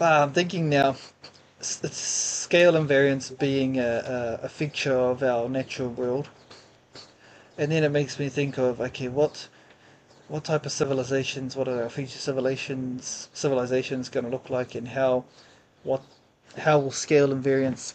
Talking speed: 145 wpm